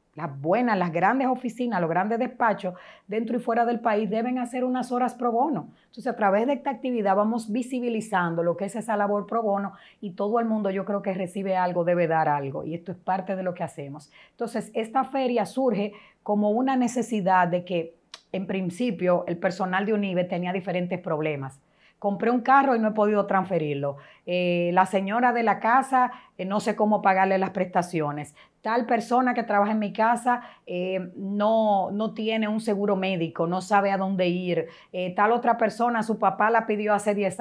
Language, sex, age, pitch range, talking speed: Spanish, female, 30-49, 180-230 Hz, 195 wpm